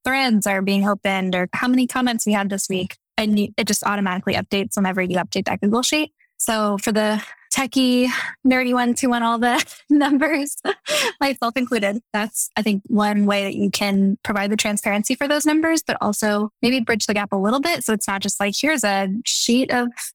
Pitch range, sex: 200-230 Hz, female